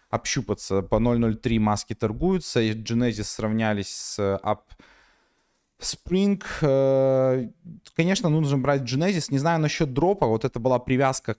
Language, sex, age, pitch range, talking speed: Russian, male, 20-39, 110-140 Hz, 125 wpm